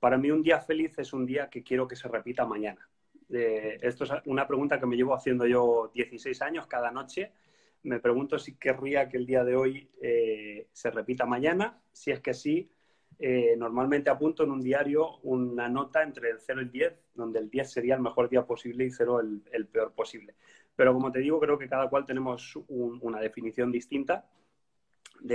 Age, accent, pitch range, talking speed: 30-49, Spanish, 120-155 Hz, 210 wpm